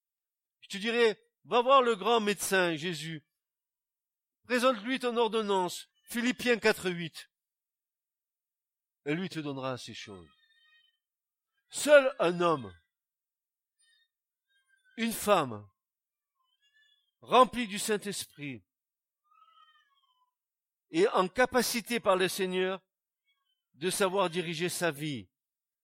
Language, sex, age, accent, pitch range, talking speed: French, male, 50-69, French, 145-230 Hz, 90 wpm